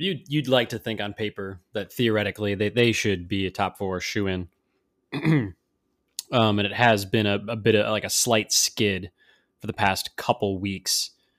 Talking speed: 190 wpm